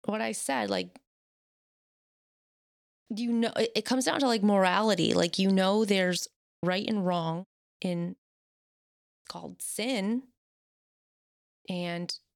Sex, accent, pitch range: female, American, 170-215 Hz